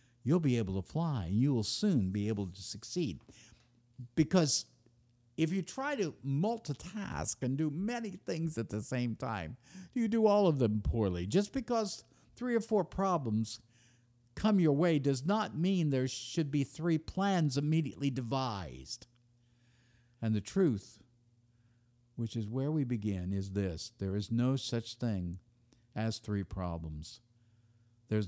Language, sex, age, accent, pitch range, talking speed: English, male, 50-69, American, 110-150 Hz, 150 wpm